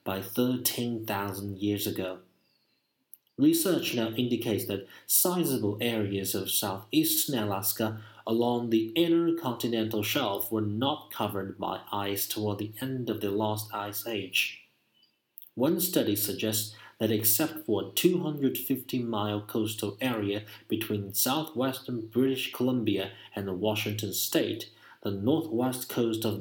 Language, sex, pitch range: Chinese, male, 105-130 Hz